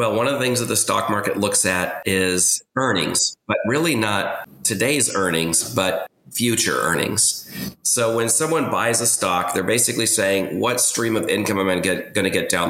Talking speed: 190 wpm